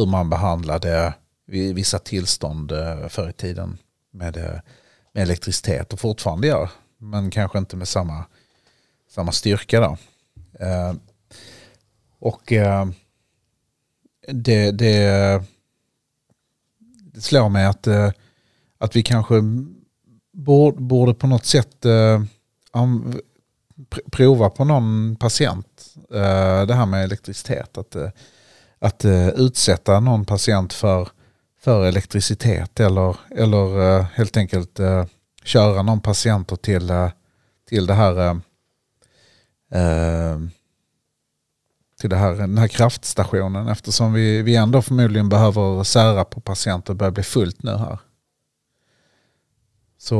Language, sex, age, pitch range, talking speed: Swedish, male, 40-59, 95-115 Hz, 110 wpm